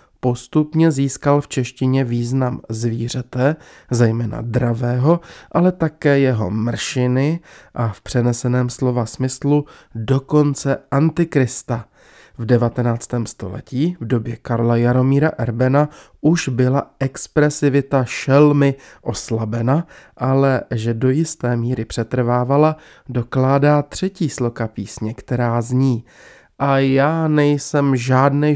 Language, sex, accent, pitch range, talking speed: Czech, male, native, 120-145 Hz, 100 wpm